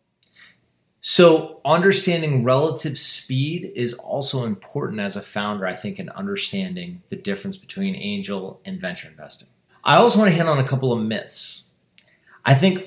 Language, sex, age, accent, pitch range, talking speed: English, male, 30-49, American, 105-145 Hz, 155 wpm